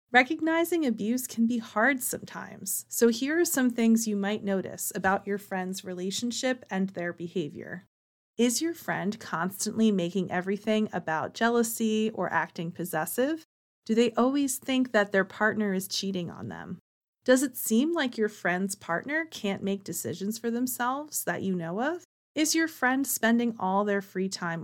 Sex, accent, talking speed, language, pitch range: female, American, 165 wpm, English, 190-245 Hz